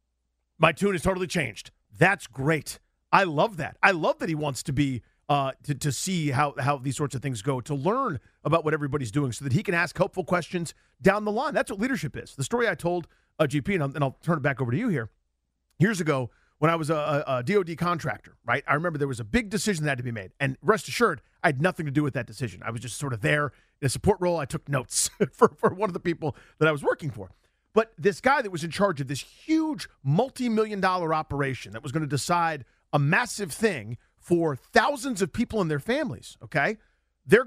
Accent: American